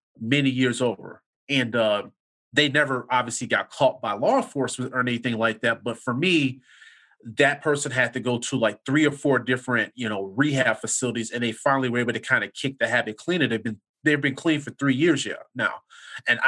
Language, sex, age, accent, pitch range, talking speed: English, male, 30-49, American, 115-140 Hz, 210 wpm